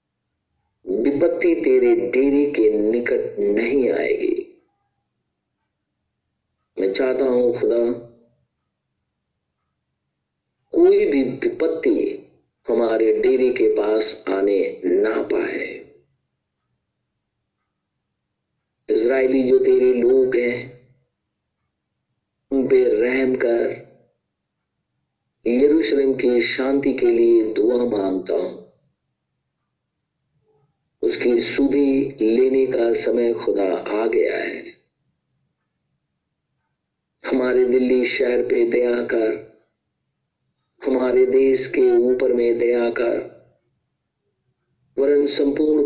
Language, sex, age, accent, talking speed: Hindi, male, 50-69, native, 80 wpm